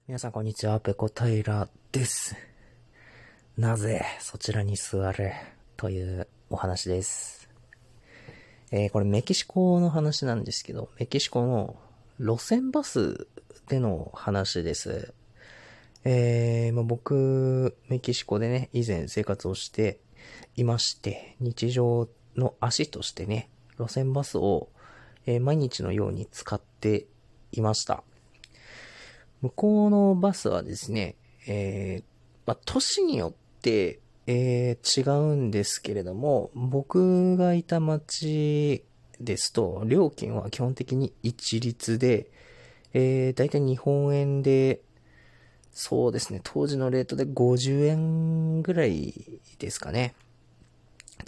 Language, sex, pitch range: Japanese, male, 110-135 Hz